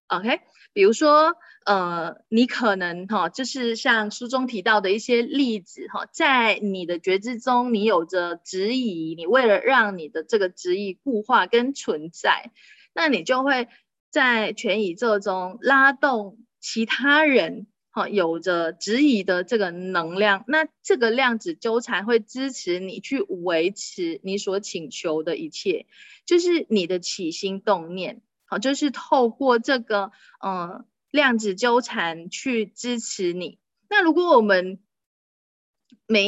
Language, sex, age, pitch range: Chinese, female, 20-39, 190-260 Hz